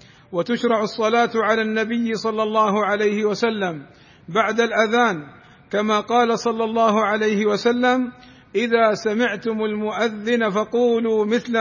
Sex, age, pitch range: male, 50-69, 205-230 Hz